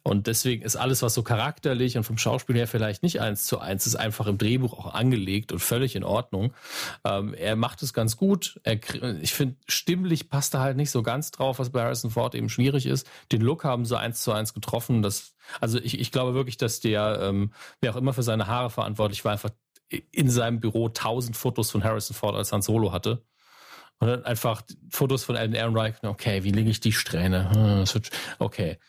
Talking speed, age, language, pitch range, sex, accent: 210 wpm, 40-59, German, 110-130 Hz, male, German